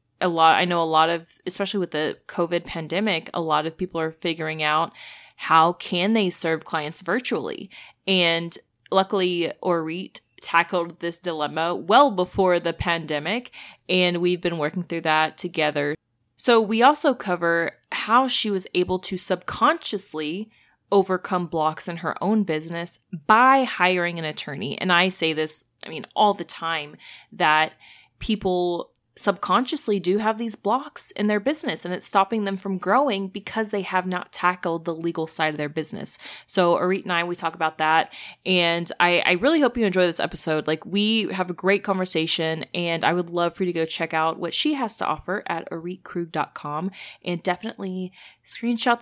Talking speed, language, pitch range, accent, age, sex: 175 wpm, English, 165-205 Hz, American, 20-39, female